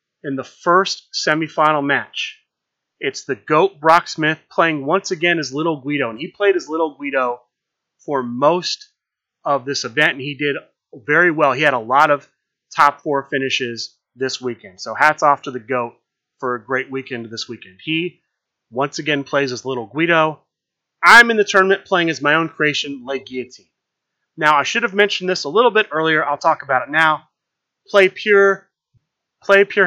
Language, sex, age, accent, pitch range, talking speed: English, male, 30-49, American, 140-185 Hz, 180 wpm